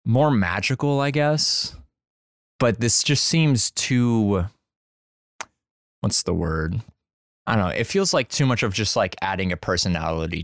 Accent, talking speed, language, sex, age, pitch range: American, 150 wpm, English, male, 20-39, 90-110 Hz